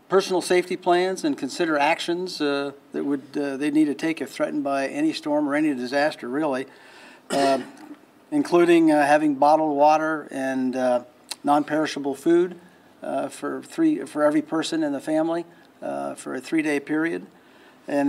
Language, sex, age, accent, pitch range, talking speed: English, male, 50-69, American, 140-180 Hz, 160 wpm